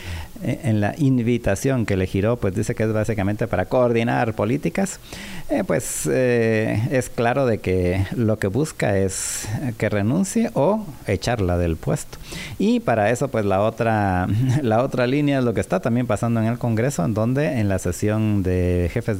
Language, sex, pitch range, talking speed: Spanish, male, 105-130 Hz, 175 wpm